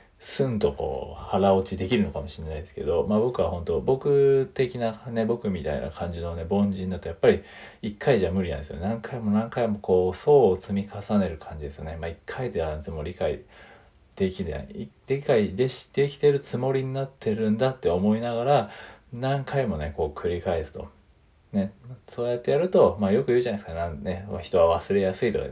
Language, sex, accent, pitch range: Japanese, male, native, 90-125 Hz